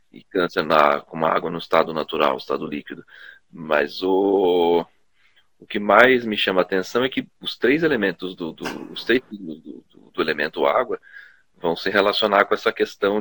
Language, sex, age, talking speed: Portuguese, male, 40-59, 185 wpm